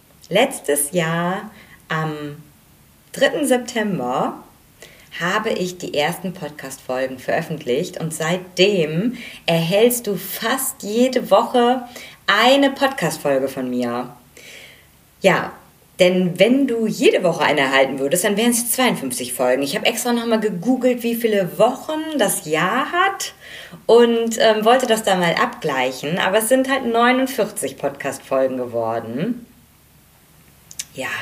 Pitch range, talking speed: 155-245 Hz, 120 wpm